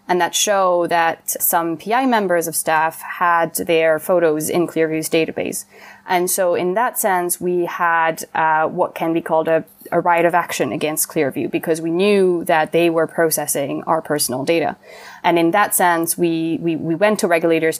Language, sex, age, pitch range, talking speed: English, female, 20-39, 165-185 Hz, 180 wpm